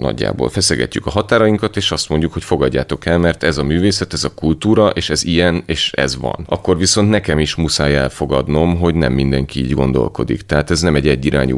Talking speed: 200 wpm